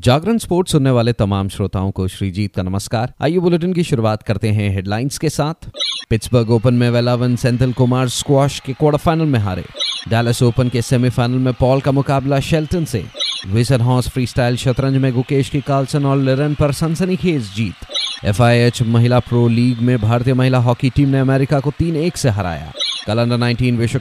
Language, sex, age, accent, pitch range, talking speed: Hindi, male, 30-49, native, 110-140 Hz, 180 wpm